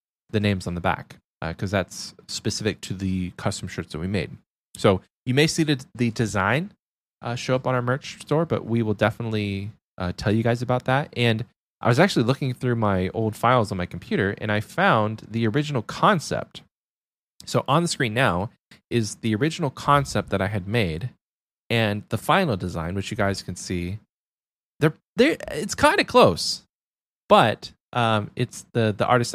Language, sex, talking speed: English, male, 190 wpm